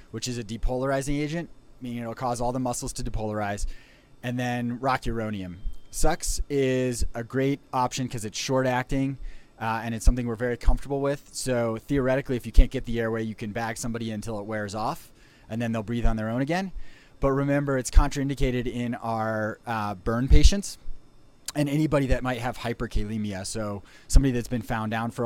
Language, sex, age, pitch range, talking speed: English, male, 30-49, 110-130 Hz, 190 wpm